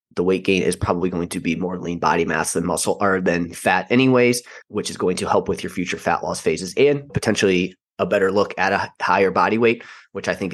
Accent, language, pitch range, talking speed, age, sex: American, English, 95-115 Hz, 240 wpm, 20-39, male